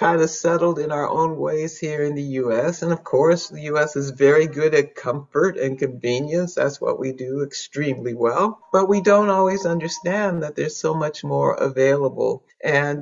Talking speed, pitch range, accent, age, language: 190 wpm, 140-180 Hz, American, 60-79, English